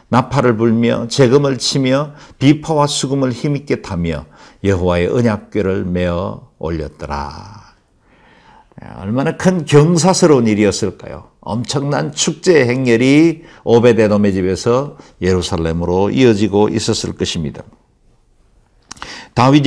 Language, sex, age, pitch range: Korean, male, 50-69, 100-135 Hz